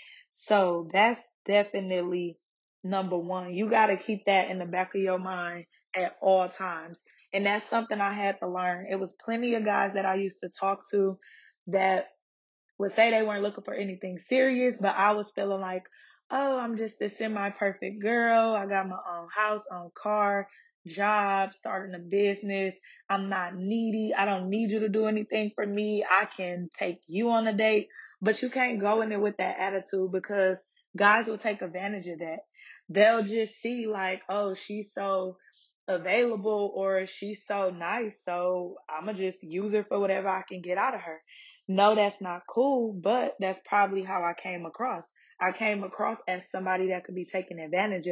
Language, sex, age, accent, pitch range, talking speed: English, female, 20-39, American, 185-215 Hz, 190 wpm